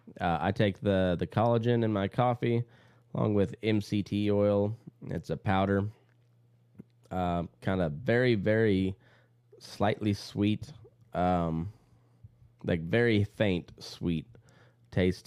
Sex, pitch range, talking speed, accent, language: male, 90-120 Hz, 115 wpm, American, English